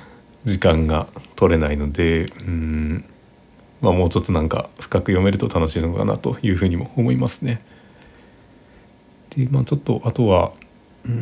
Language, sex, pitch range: Japanese, male, 90-115 Hz